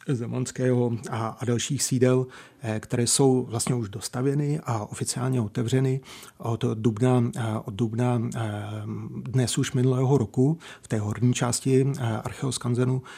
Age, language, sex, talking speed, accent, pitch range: 40-59, Czech, male, 125 wpm, native, 115-130 Hz